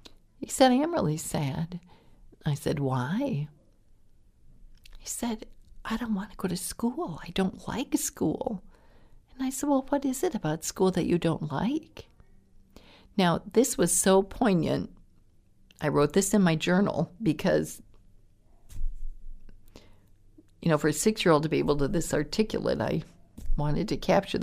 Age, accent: 50-69, American